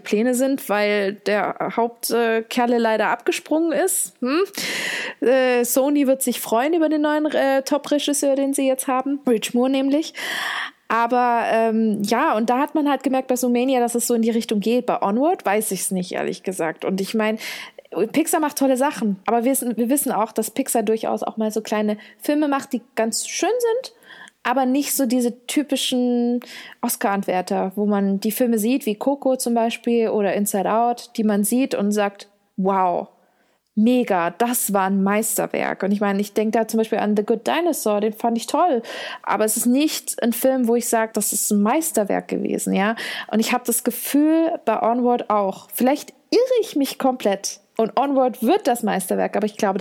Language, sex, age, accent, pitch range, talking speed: German, female, 20-39, German, 215-270 Hz, 190 wpm